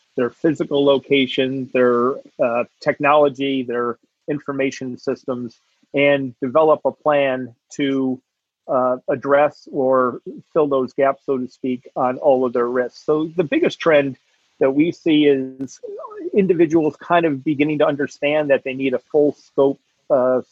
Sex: male